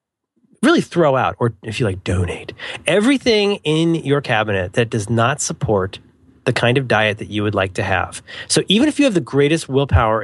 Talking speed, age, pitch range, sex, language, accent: 200 wpm, 30-49, 115-170 Hz, male, English, American